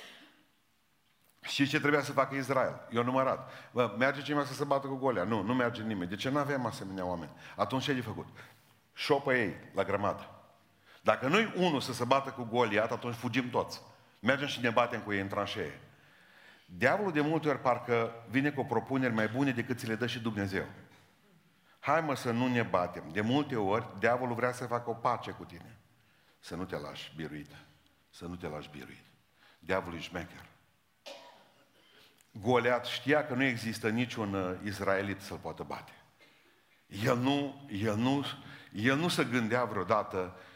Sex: male